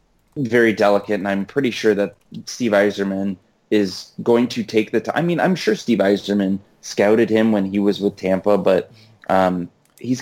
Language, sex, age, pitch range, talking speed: English, male, 20-39, 95-110 Hz, 190 wpm